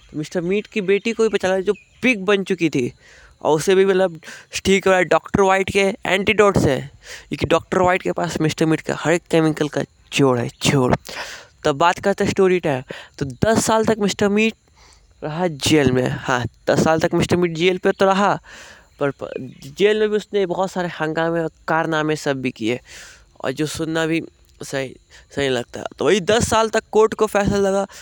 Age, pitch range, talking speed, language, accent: 20-39, 160-205 Hz, 140 wpm, English, Indian